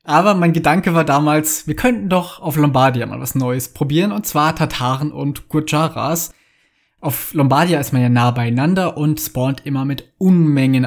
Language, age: German, 20-39